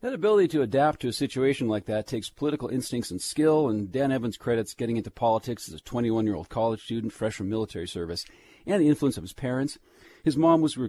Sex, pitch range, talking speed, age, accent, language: male, 105-135 Hz, 215 wpm, 40-59, American, English